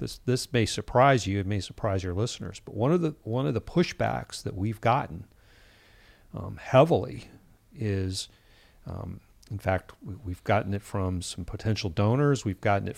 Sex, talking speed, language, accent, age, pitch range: male, 170 wpm, English, American, 40-59, 100-120 Hz